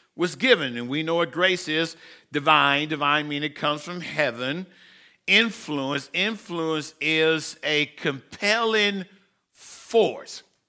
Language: English